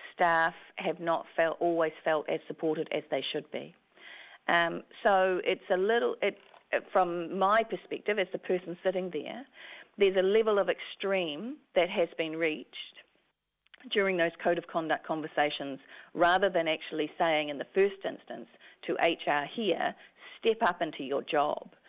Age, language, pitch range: 40-59, English, 160-195 Hz